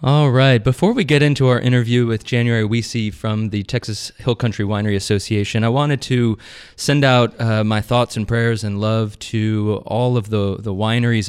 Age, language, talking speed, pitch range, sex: 20-39, English, 190 wpm, 100-115 Hz, male